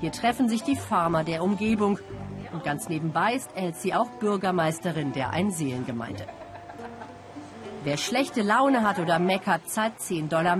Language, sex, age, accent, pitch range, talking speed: German, female, 50-69, German, 160-210 Hz, 140 wpm